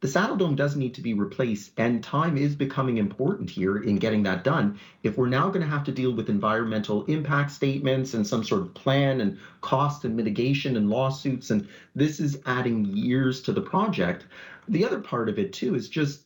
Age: 30-49